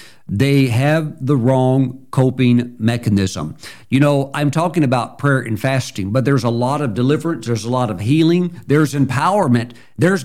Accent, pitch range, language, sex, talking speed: American, 120-155 Hz, English, male, 165 wpm